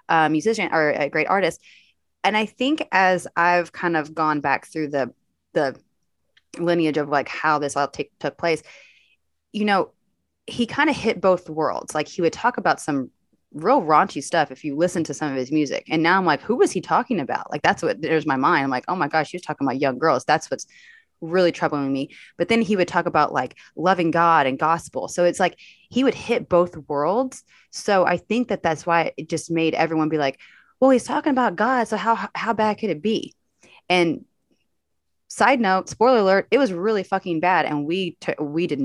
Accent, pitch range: American, 145-185 Hz